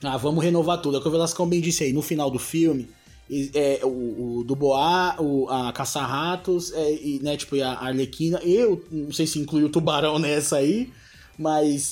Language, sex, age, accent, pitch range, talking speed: Portuguese, male, 20-39, Brazilian, 130-180 Hz, 200 wpm